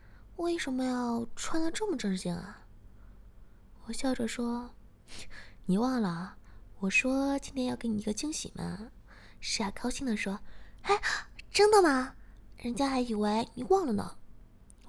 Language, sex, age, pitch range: Chinese, female, 20-39, 190-255 Hz